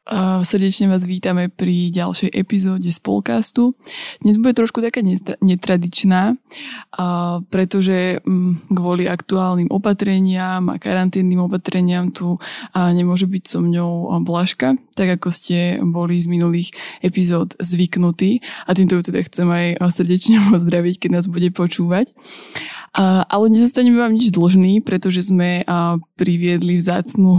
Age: 20-39